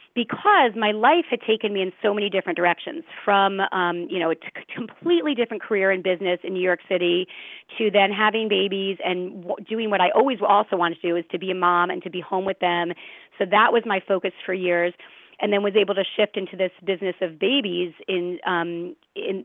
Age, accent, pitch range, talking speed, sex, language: 30-49, American, 180-230 Hz, 215 wpm, female, English